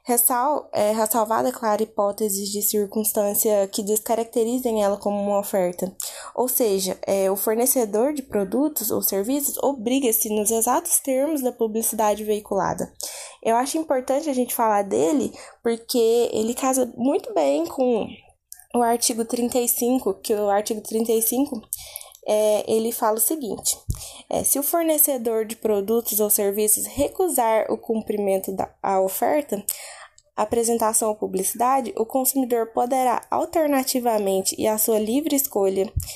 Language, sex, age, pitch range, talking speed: Portuguese, female, 10-29, 210-255 Hz, 125 wpm